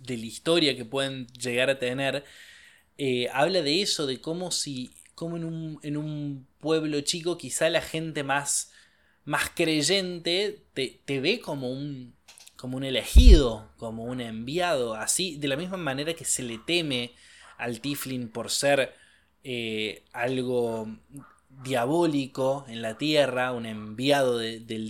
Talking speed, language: 150 wpm, Spanish